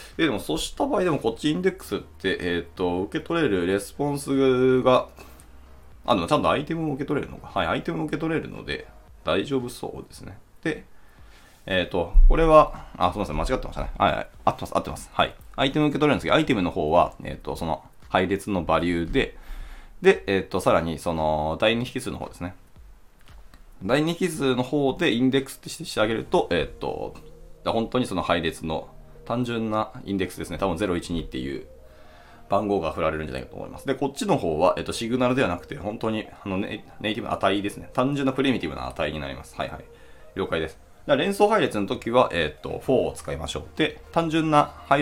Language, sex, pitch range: Japanese, male, 85-135 Hz